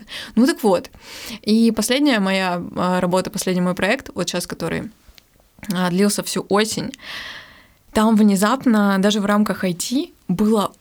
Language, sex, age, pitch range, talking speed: Russian, female, 20-39, 185-215 Hz, 130 wpm